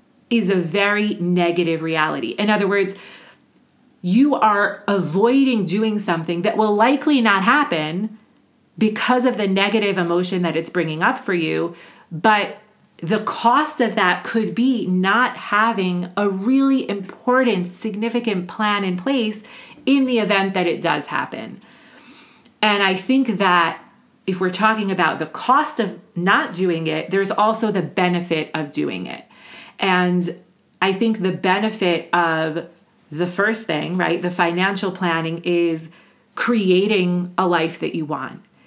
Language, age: English, 40-59